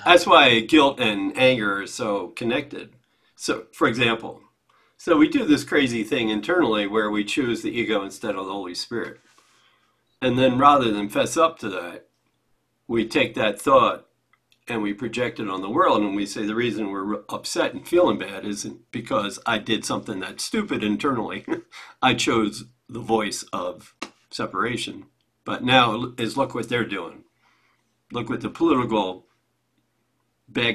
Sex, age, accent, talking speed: male, 50-69, American, 160 wpm